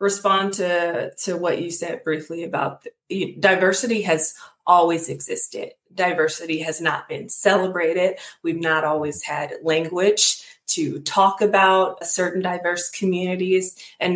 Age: 20-39